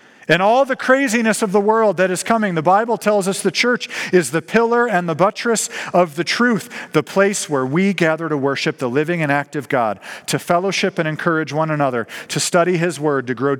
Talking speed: 215 wpm